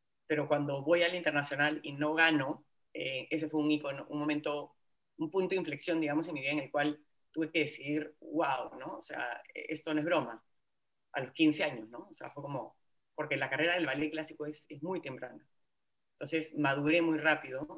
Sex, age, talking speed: female, 30-49, 205 wpm